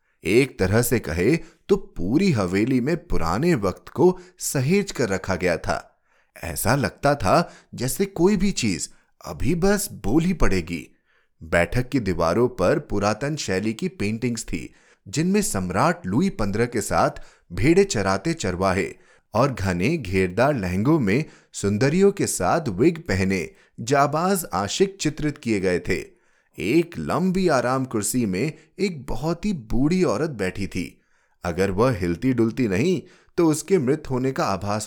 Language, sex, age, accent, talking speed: Hindi, male, 30-49, native, 145 wpm